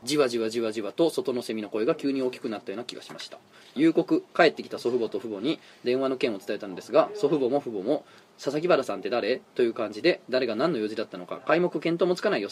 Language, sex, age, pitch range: Japanese, male, 20-39, 130-190 Hz